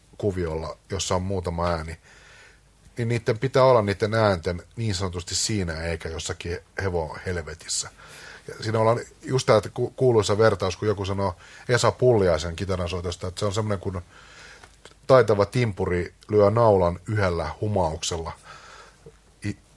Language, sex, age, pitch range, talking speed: Finnish, male, 30-49, 90-120 Hz, 120 wpm